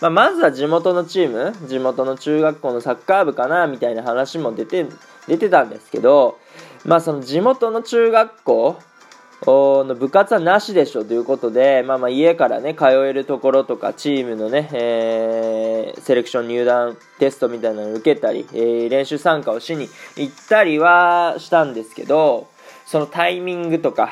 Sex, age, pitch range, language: male, 20-39, 125-185 Hz, Japanese